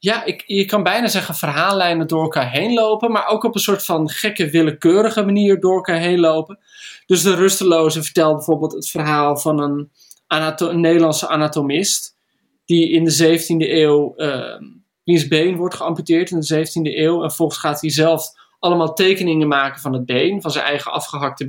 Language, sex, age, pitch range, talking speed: Dutch, male, 20-39, 150-170 Hz, 185 wpm